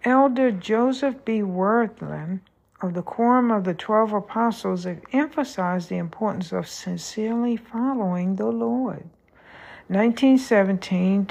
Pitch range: 175-235 Hz